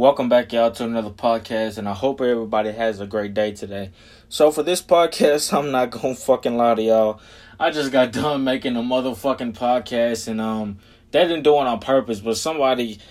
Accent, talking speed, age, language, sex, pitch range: American, 205 wpm, 20-39, English, male, 115-140 Hz